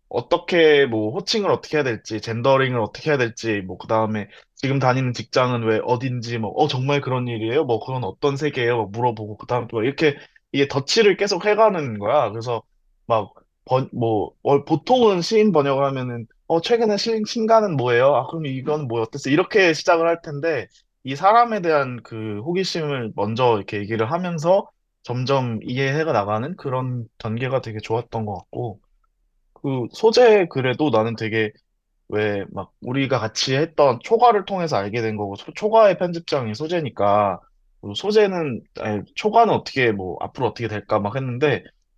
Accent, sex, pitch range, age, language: native, male, 110-160 Hz, 20-39, Korean